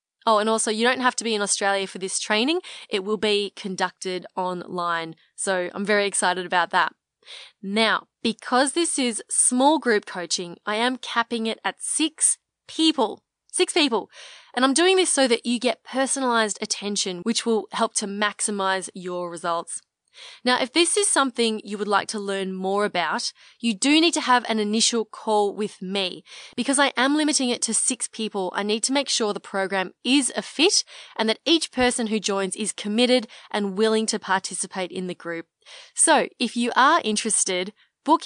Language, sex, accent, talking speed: English, female, Australian, 185 wpm